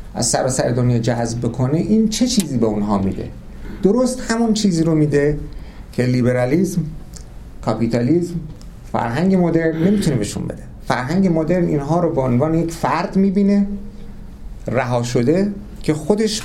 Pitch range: 125-185 Hz